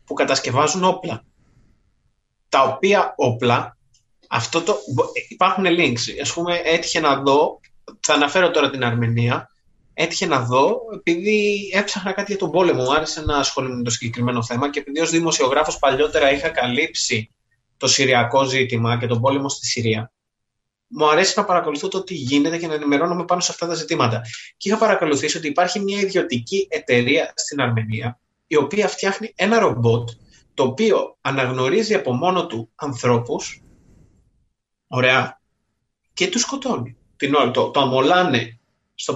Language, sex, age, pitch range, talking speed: Greek, male, 30-49, 120-190 Hz, 150 wpm